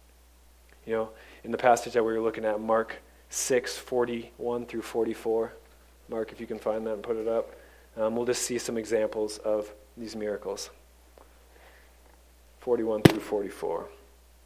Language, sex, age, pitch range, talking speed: English, male, 30-49, 100-120 Hz, 155 wpm